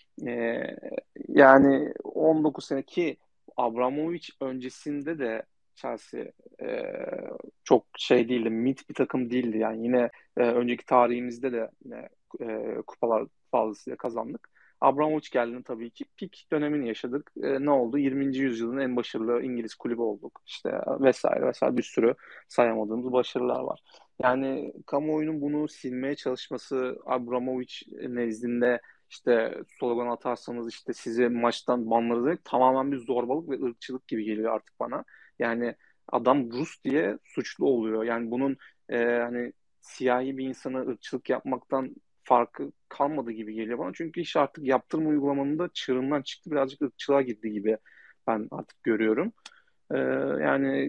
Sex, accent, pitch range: male, native, 120-140 Hz